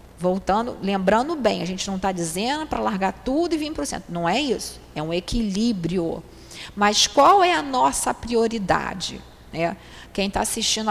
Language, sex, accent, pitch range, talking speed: Portuguese, female, Brazilian, 180-240 Hz, 170 wpm